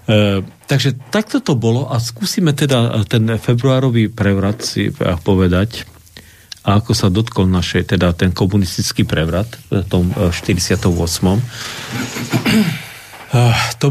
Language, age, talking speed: Slovak, 40-59, 110 wpm